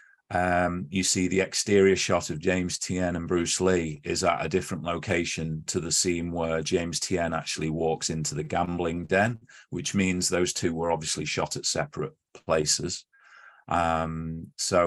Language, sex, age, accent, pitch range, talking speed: English, male, 30-49, British, 80-95 Hz, 165 wpm